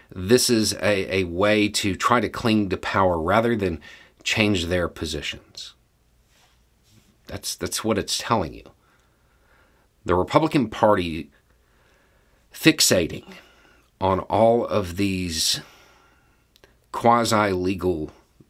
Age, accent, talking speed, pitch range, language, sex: 50-69, American, 100 wpm, 90-110 Hz, English, male